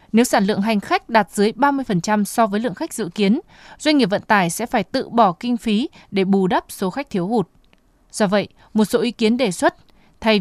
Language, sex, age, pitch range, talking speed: Vietnamese, female, 20-39, 200-250 Hz, 230 wpm